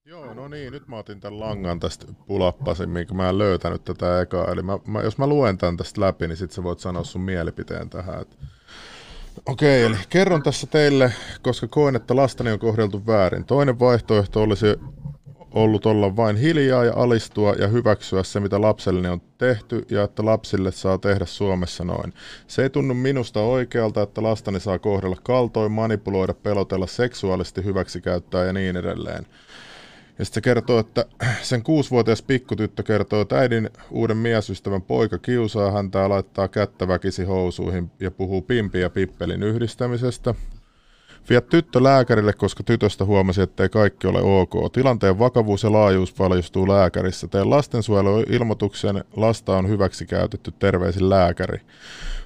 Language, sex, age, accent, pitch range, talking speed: Finnish, male, 30-49, native, 95-120 Hz, 150 wpm